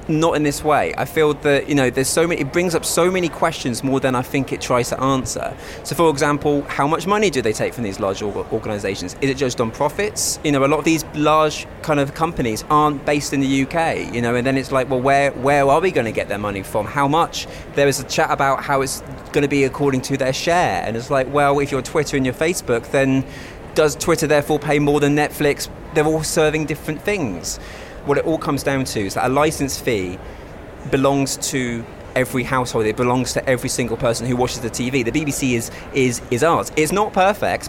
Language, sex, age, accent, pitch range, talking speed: English, male, 20-39, British, 125-150 Hz, 235 wpm